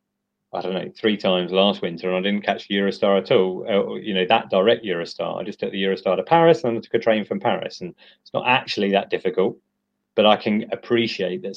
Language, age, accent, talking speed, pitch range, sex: English, 30-49, British, 235 wpm, 90-110 Hz, male